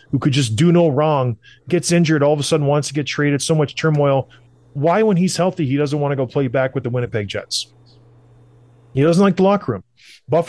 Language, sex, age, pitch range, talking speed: English, male, 30-49, 125-165 Hz, 235 wpm